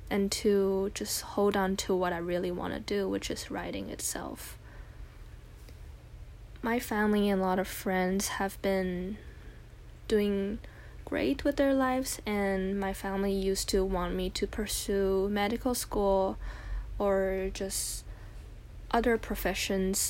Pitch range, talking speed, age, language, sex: 190-210 Hz, 135 wpm, 10-29, English, female